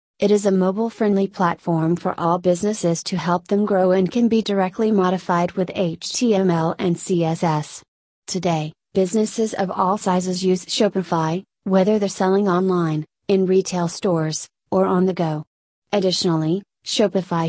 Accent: American